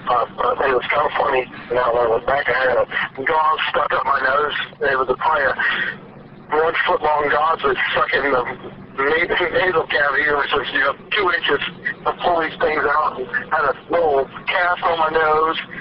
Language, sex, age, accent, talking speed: English, male, 50-69, American, 195 wpm